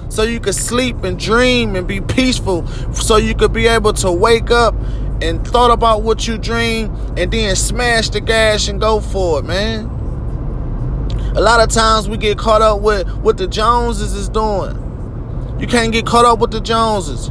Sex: male